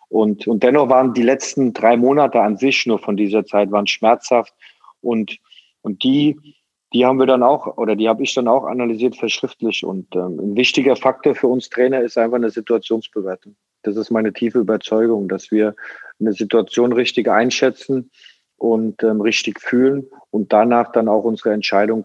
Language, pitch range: German, 110-125 Hz